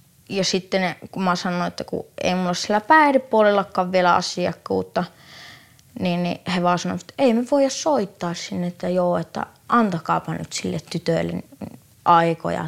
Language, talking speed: Finnish, 155 wpm